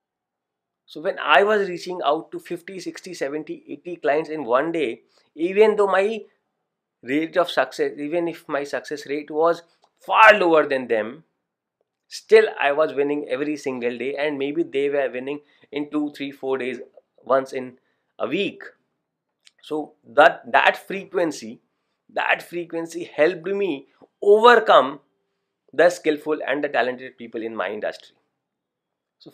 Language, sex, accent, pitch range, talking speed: English, male, Indian, 140-190 Hz, 145 wpm